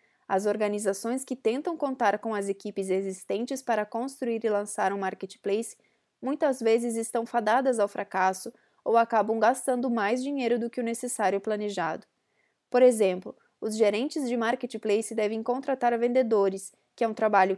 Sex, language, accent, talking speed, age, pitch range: female, Portuguese, Brazilian, 150 wpm, 20-39, 210-260 Hz